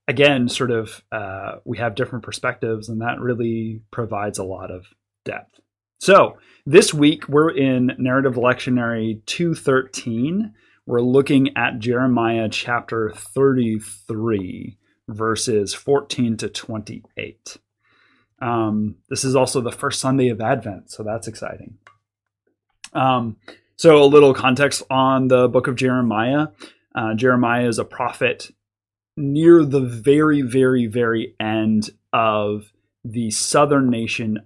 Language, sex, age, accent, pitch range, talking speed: English, male, 30-49, American, 110-130 Hz, 125 wpm